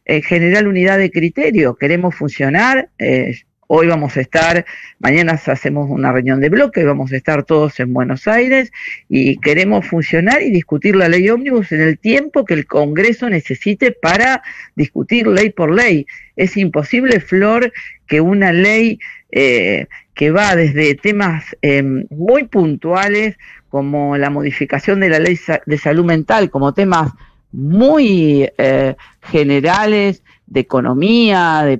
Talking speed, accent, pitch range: 140 wpm, Argentinian, 140-200 Hz